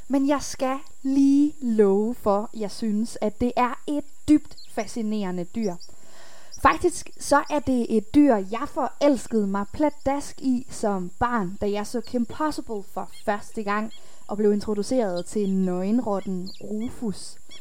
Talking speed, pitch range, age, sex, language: 145 wpm, 205-255 Hz, 20-39, female, Danish